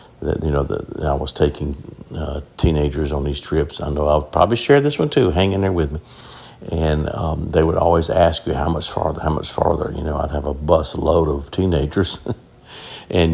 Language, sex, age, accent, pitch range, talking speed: English, male, 50-69, American, 75-90 Hz, 215 wpm